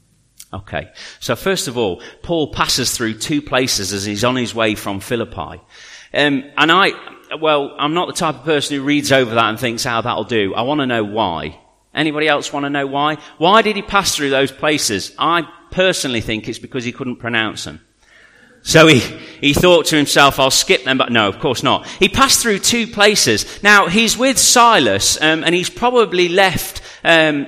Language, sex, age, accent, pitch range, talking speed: English, male, 40-59, British, 135-185 Hz, 205 wpm